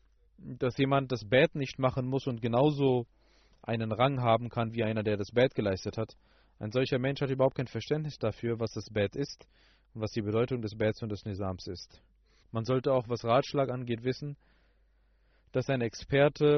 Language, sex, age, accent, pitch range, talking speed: German, male, 30-49, German, 110-125 Hz, 190 wpm